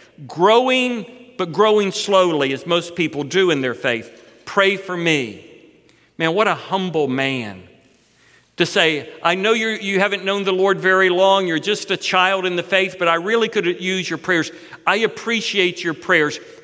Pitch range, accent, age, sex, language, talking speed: 150-190 Hz, American, 50-69, male, English, 175 wpm